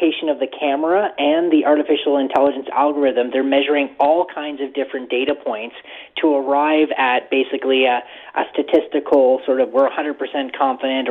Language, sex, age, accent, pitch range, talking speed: English, male, 30-49, American, 130-155 Hz, 150 wpm